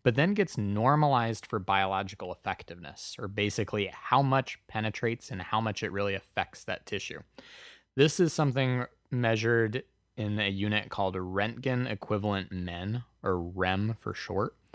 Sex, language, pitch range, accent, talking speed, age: male, English, 95-125 Hz, American, 140 wpm, 20-39